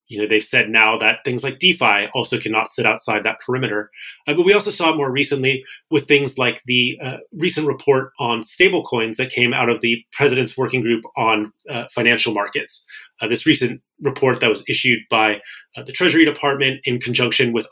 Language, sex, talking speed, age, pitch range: English, male, 195 wpm, 30-49, 110-145 Hz